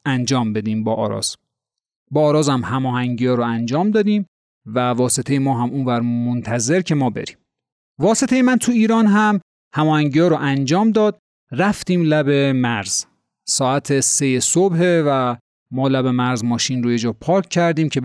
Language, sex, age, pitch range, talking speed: Persian, male, 30-49, 120-160 Hz, 150 wpm